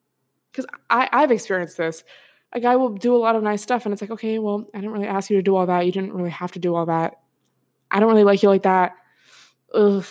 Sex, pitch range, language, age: female, 180-220 Hz, English, 20-39